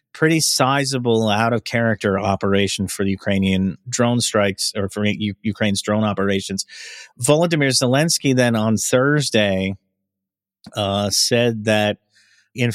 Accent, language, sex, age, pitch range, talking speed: American, English, male, 30-49, 100-115 Hz, 120 wpm